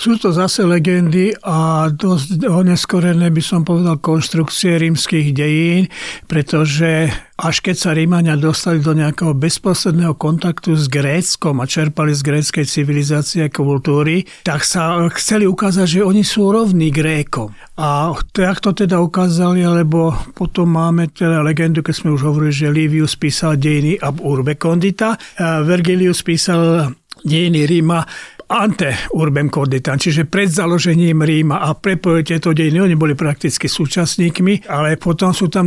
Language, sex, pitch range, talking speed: Slovak, male, 155-180 Hz, 145 wpm